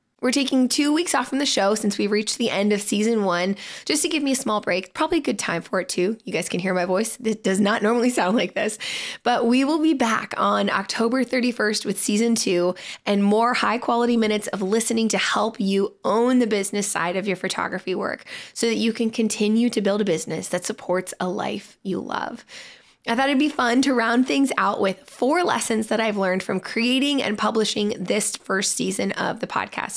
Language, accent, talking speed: English, American, 225 wpm